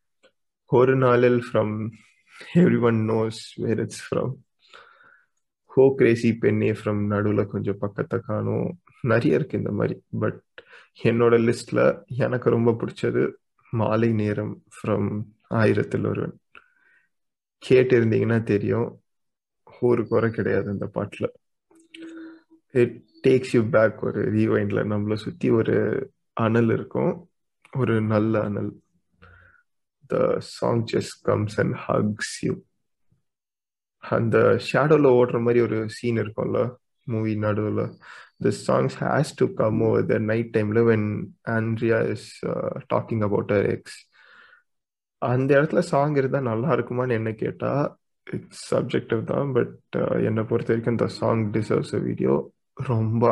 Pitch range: 110-130 Hz